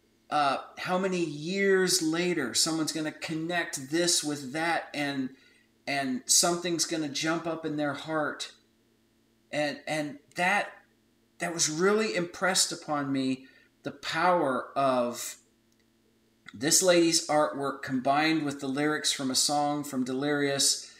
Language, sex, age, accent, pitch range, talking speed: English, male, 40-59, American, 130-170 Hz, 130 wpm